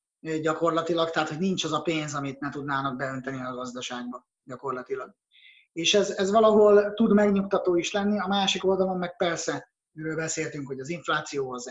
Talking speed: 165 wpm